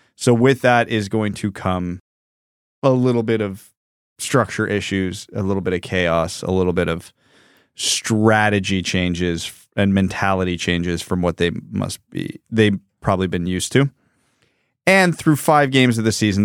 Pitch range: 95-120 Hz